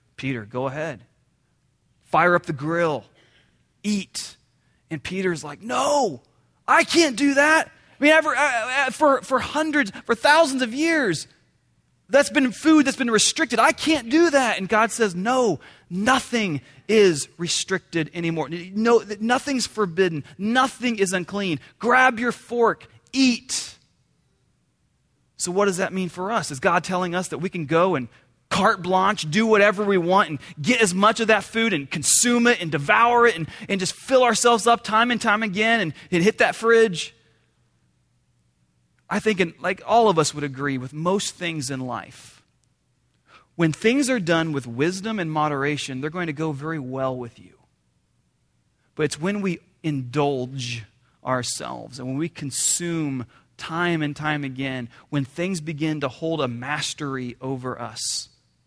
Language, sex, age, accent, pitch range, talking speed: English, male, 30-49, American, 140-225 Hz, 160 wpm